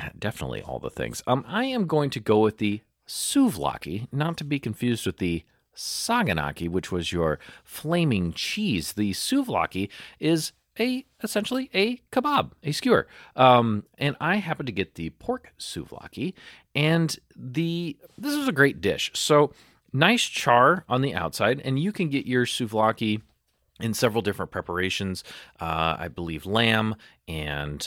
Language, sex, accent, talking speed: English, male, American, 155 wpm